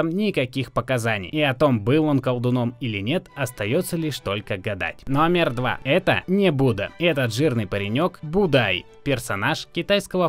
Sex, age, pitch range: male, 20-39, 120-165 Hz